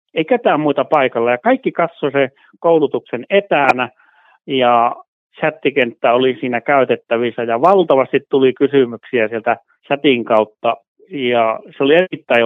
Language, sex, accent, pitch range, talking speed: Finnish, male, native, 120-155 Hz, 125 wpm